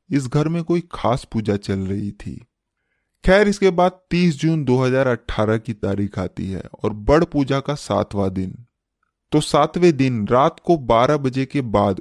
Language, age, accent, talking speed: Hindi, 20-39, native, 170 wpm